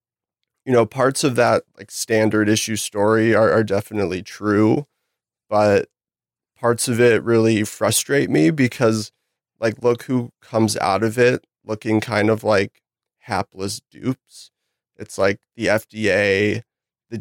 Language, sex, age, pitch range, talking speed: English, male, 30-49, 105-120 Hz, 135 wpm